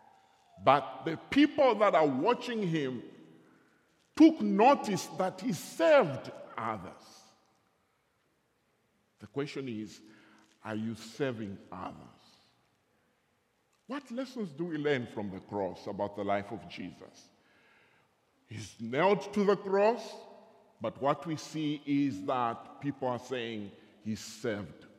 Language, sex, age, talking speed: English, male, 50-69, 120 wpm